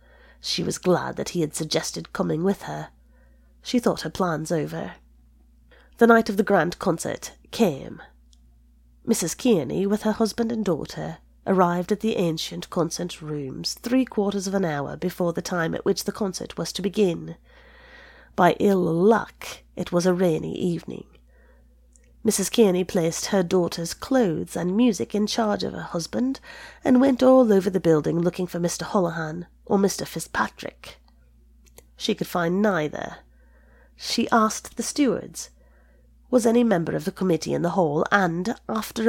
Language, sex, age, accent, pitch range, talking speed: English, female, 30-49, British, 160-220 Hz, 155 wpm